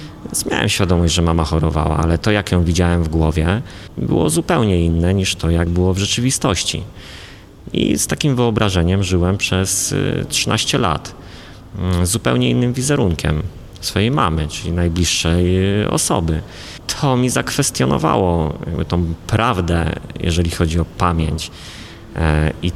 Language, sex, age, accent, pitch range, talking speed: Polish, male, 30-49, native, 85-100 Hz, 125 wpm